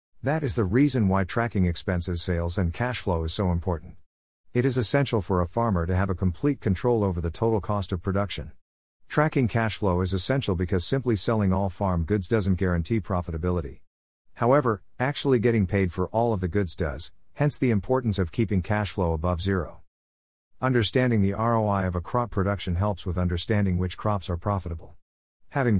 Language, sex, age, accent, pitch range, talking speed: English, male, 50-69, American, 90-115 Hz, 185 wpm